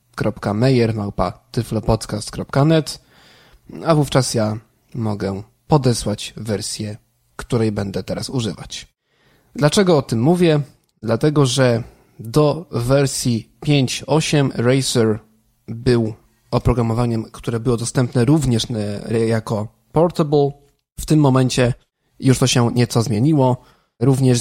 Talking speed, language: 95 wpm, Polish